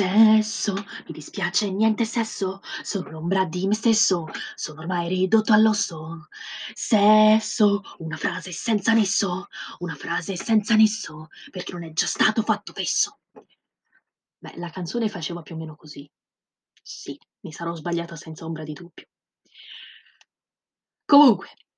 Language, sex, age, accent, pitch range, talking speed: Italian, female, 20-39, native, 185-250 Hz, 130 wpm